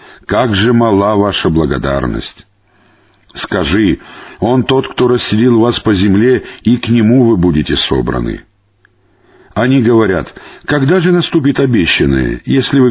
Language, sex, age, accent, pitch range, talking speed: Russian, male, 50-69, native, 95-135 Hz, 125 wpm